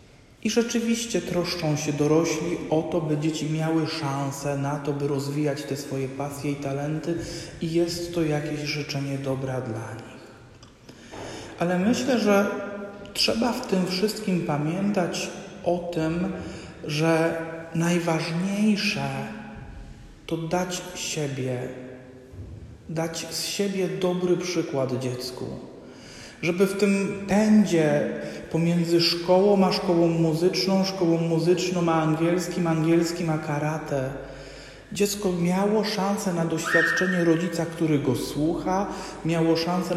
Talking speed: 115 wpm